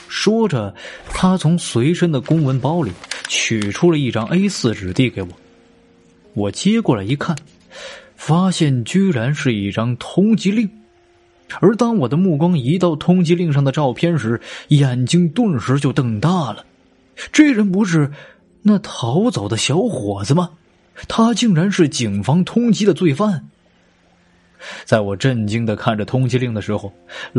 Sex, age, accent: male, 20-39, native